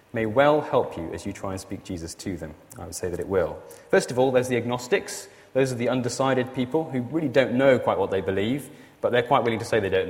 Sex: male